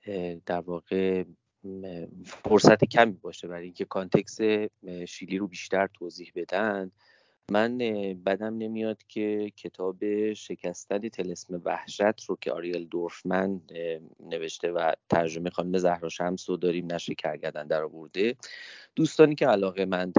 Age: 30-49